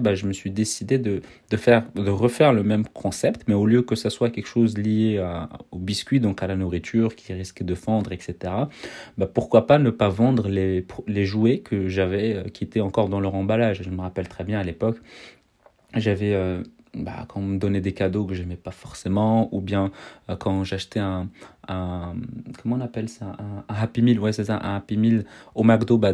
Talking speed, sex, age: 215 wpm, male, 30-49